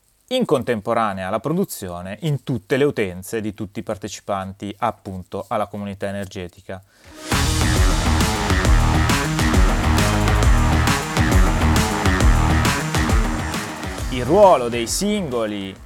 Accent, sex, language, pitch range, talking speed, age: native, male, Italian, 100-135 Hz, 75 wpm, 30-49